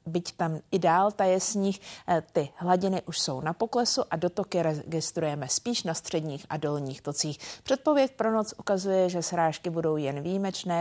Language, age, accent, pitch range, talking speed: Czech, 50-69, native, 155-195 Hz, 165 wpm